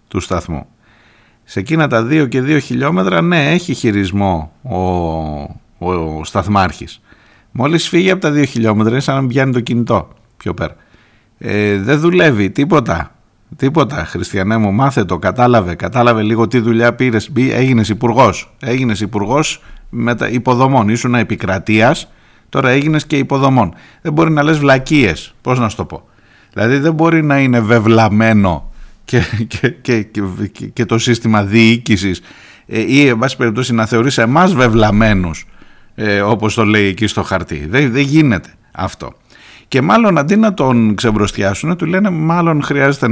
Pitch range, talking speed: 95-130 Hz, 150 wpm